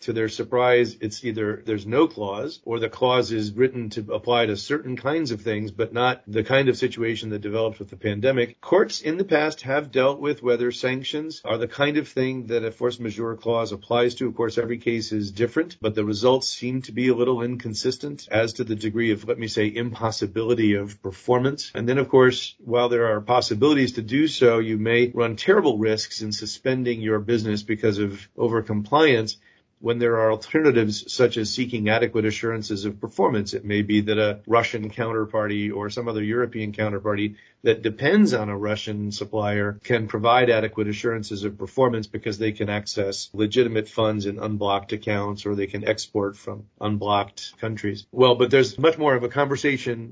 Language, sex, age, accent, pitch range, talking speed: English, male, 40-59, American, 105-125 Hz, 190 wpm